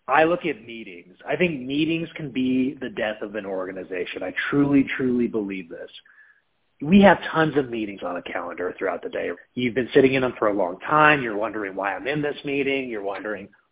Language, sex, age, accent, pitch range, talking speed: English, male, 30-49, American, 125-155 Hz, 210 wpm